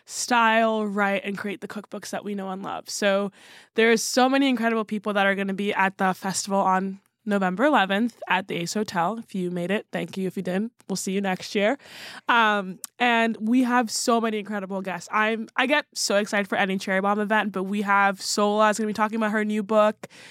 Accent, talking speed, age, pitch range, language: American, 225 wpm, 10-29, 195-225 Hz, English